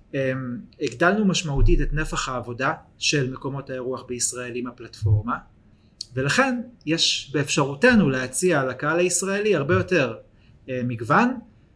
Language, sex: Hebrew, male